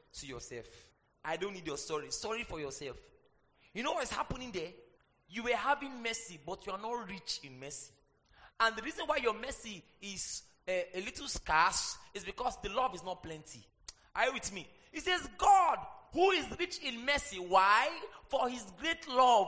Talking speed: 190 wpm